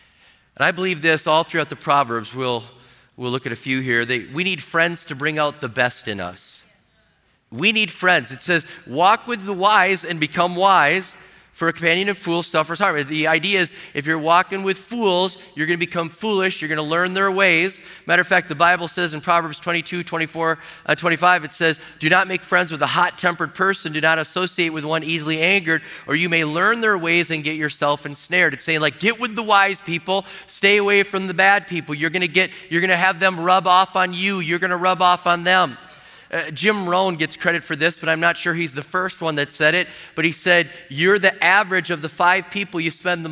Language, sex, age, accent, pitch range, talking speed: English, male, 30-49, American, 155-185 Hz, 230 wpm